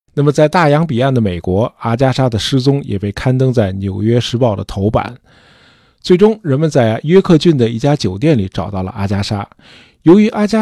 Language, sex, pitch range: Chinese, male, 110-150 Hz